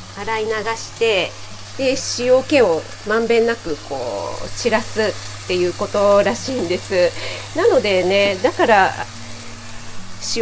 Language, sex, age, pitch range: Japanese, female, 40-59, 170-250 Hz